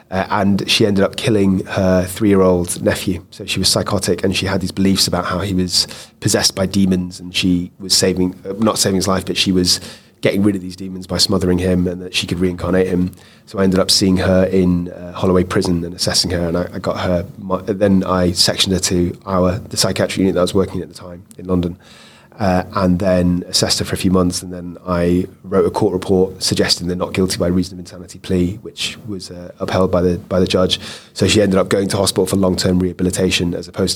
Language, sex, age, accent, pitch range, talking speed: English, male, 30-49, British, 90-100 Hz, 235 wpm